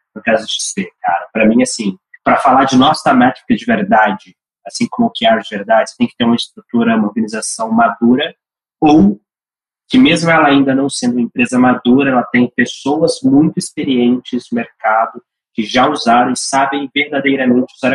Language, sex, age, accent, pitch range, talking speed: Portuguese, male, 20-39, Brazilian, 120-185 Hz, 175 wpm